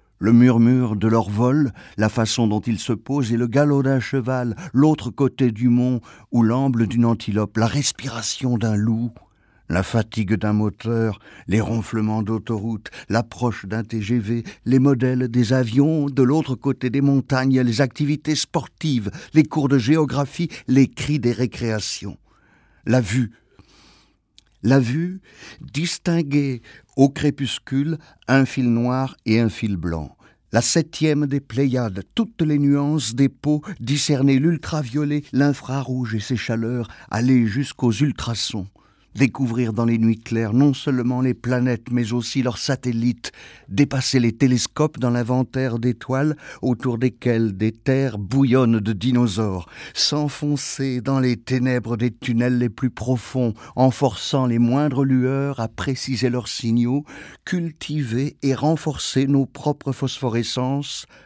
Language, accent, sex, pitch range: French, French, male, 115-140 Hz